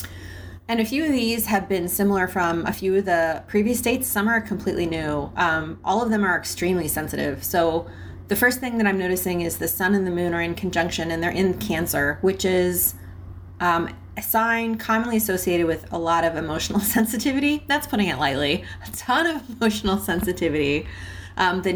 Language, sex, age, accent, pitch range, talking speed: English, female, 30-49, American, 165-205 Hz, 195 wpm